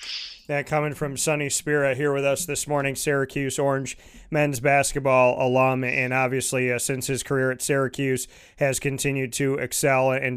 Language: English